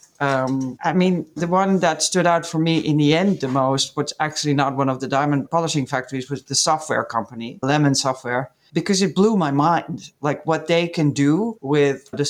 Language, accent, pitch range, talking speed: English, Dutch, 140-165 Hz, 205 wpm